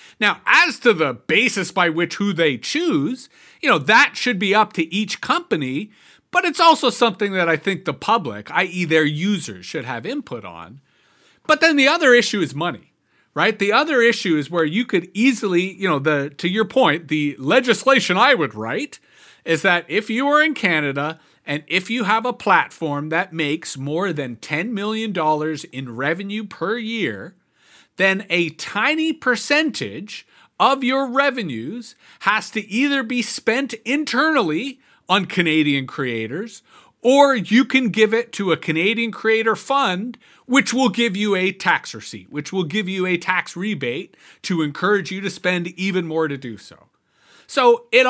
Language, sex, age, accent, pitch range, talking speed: English, male, 40-59, American, 170-255 Hz, 170 wpm